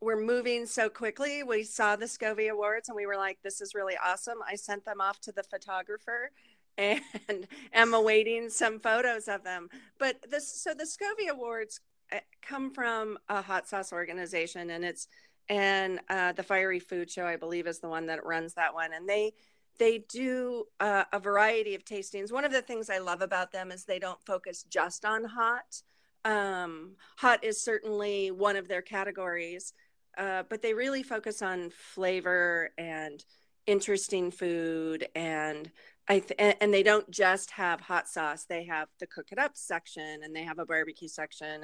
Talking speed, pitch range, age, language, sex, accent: 180 wpm, 175-220 Hz, 40-59, English, female, American